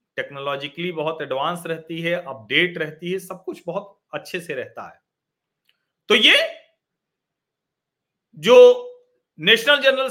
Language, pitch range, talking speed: Hindi, 155-220 Hz, 120 wpm